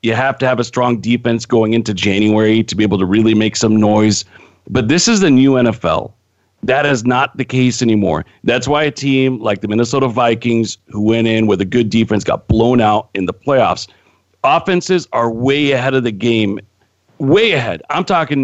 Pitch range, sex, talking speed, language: 110-145 Hz, male, 200 wpm, English